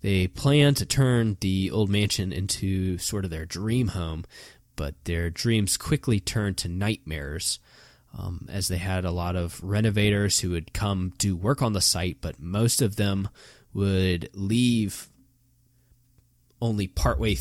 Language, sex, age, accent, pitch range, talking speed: English, male, 20-39, American, 90-110 Hz, 150 wpm